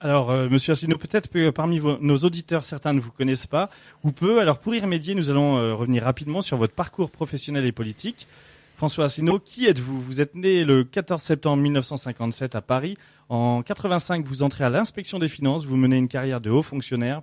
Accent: French